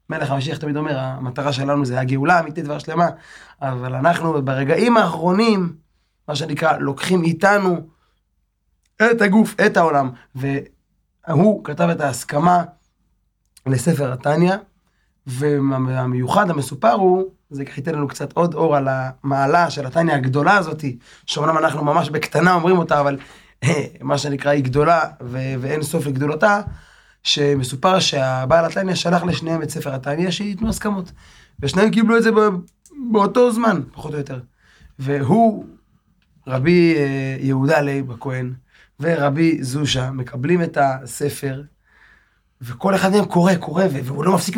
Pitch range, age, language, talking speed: 140-185 Hz, 20-39, Hebrew, 130 wpm